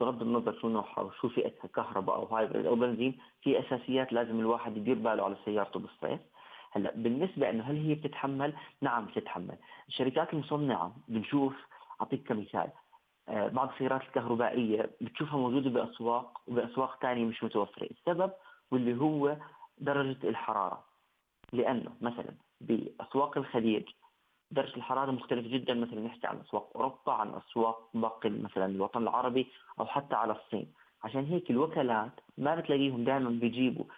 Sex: male